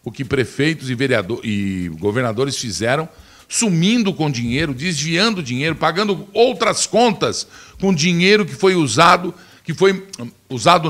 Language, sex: Portuguese, male